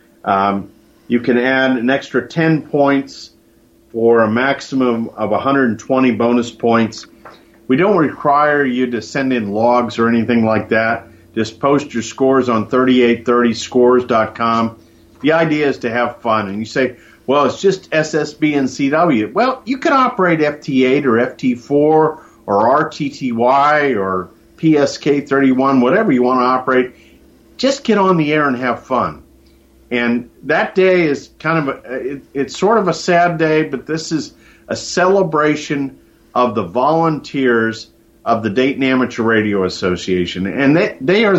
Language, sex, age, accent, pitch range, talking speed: English, male, 50-69, American, 115-150 Hz, 150 wpm